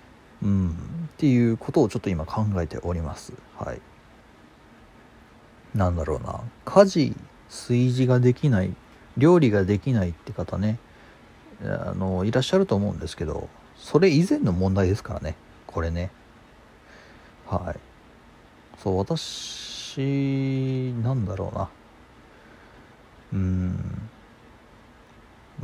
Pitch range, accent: 95-130 Hz, native